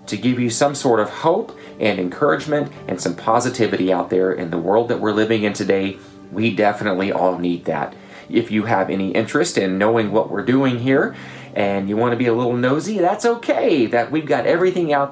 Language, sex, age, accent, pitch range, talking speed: English, male, 30-49, American, 105-140 Hz, 205 wpm